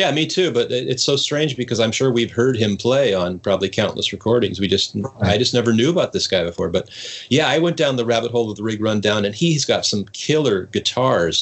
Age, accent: 30-49, American